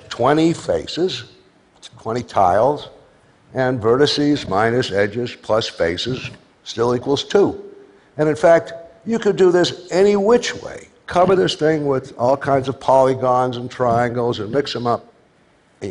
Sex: male